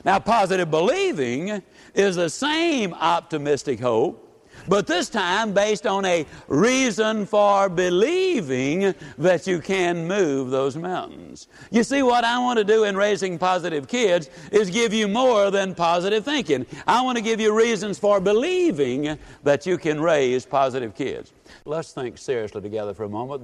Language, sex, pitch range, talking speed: English, male, 125-200 Hz, 160 wpm